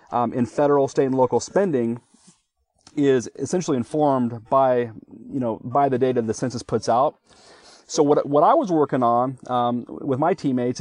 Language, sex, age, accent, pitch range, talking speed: English, male, 30-49, American, 120-145 Hz, 170 wpm